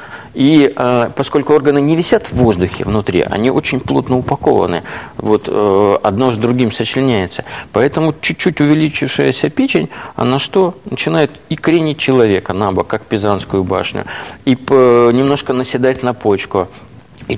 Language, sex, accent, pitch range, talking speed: Russian, male, native, 105-145 Hz, 130 wpm